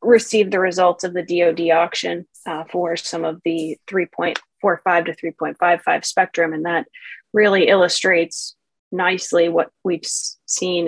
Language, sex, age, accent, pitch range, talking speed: English, female, 30-49, American, 170-185 Hz, 130 wpm